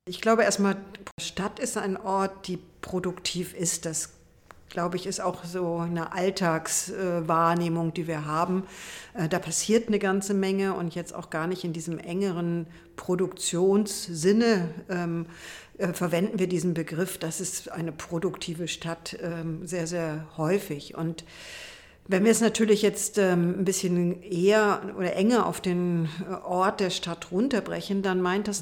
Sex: female